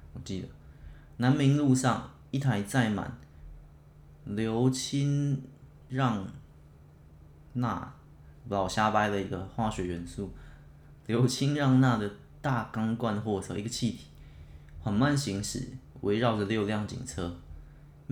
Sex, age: male, 20-39